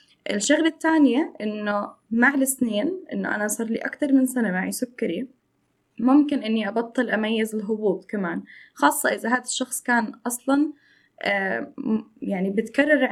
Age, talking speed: 10-29, 135 wpm